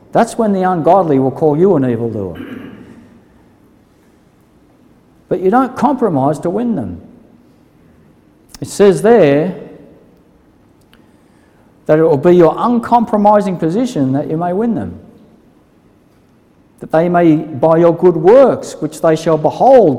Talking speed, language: 125 wpm, English